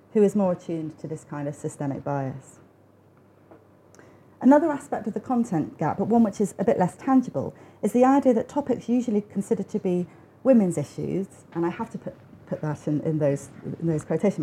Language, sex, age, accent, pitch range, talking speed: English, female, 40-59, British, 165-240 Hz, 190 wpm